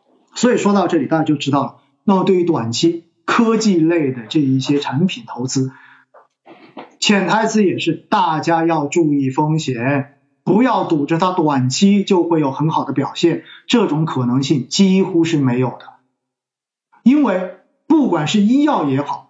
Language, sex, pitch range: Chinese, male, 155-235 Hz